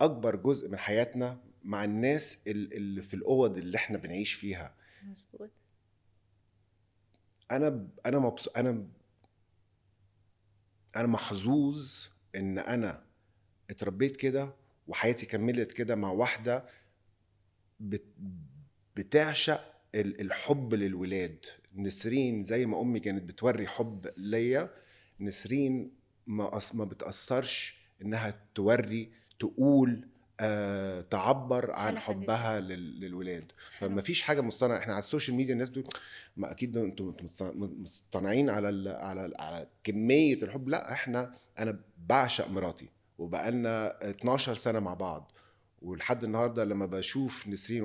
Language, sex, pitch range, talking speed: Arabic, male, 100-125 Hz, 115 wpm